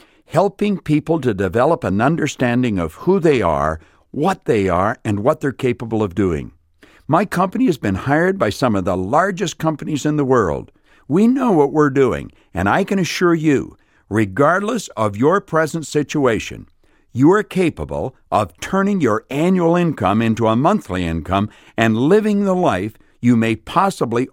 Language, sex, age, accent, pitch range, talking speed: English, male, 60-79, American, 105-170 Hz, 165 wpm